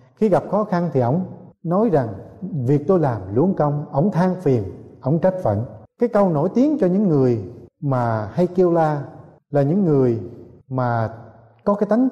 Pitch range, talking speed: 130-185 Hz, 185 wpm